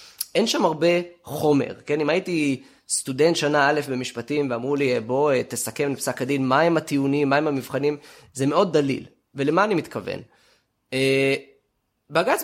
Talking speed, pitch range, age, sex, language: 140 wpm, 130-175 Hz, 20-39, male, Hebrew